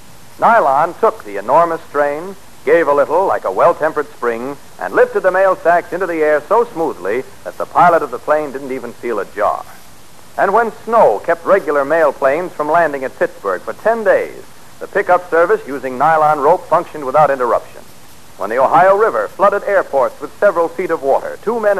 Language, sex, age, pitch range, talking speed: English, male, 60-79, 140-195 Hz, 190 wpm